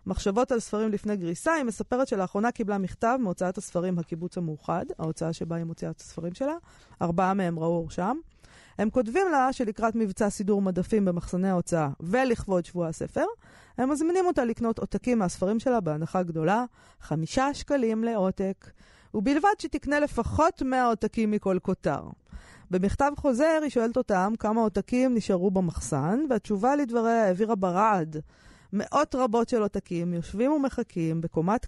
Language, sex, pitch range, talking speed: Hebrew, female, 170-230 Hz, 140 wpm